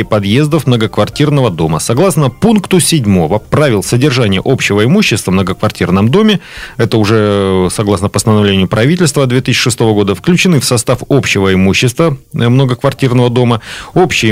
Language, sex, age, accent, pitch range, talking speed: Russian, male, 30-49, native, 105-140 Hz, 115 wpm